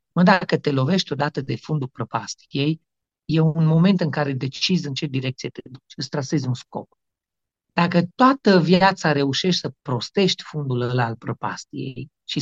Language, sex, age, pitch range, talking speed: Romanian, male, 40-59, 125-165 Hz, 160 wpm